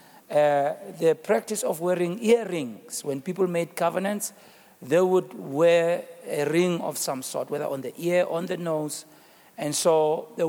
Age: 60-79